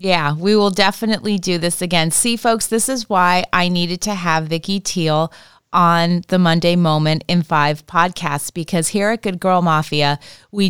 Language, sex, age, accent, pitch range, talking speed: English, female, 30-49, American, 165-205 Hz, 180 wpm